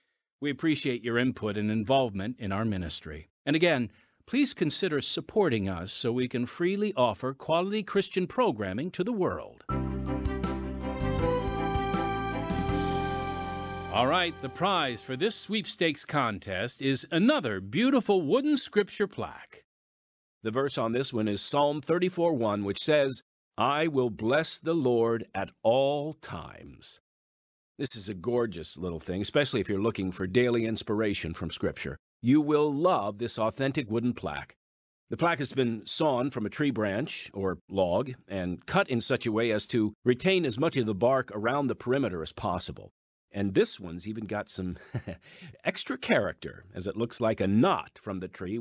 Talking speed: 160 wpm